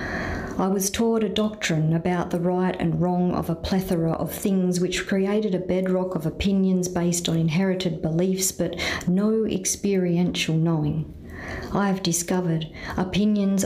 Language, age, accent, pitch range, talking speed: English, 50-69, Australian, 165-190 Hz, 145 wpm